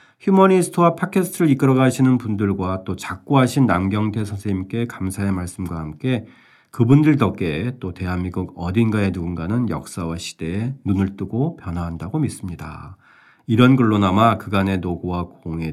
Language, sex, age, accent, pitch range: Korean, male, 40-59, native, 85-125 Hz